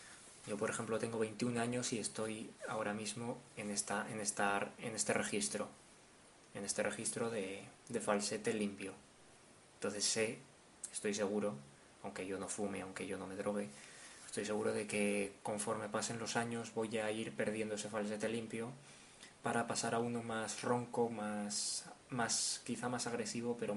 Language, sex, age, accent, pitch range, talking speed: Spanish, male, 20-39, Spanish, 105-120 Hz, 160 wpm